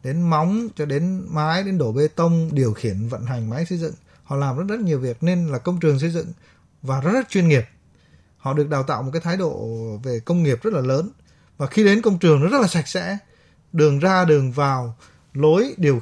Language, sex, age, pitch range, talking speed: Vietnamese, male, 20-39, 130-170 Hz, 235 wpm